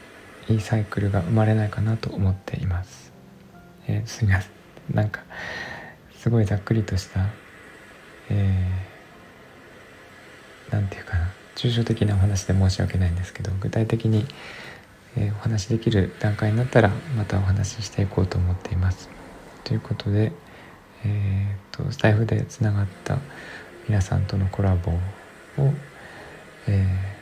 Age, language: 20-39, Japanese